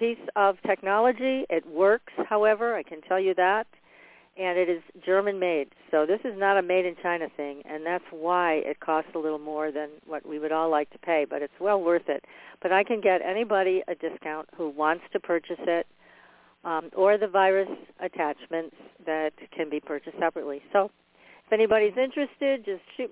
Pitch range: 160-200 Hz